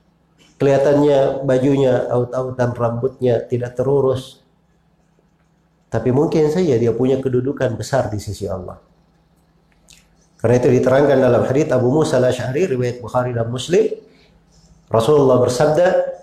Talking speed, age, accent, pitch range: 110 wpm, 50-69, native, 125-165 Hz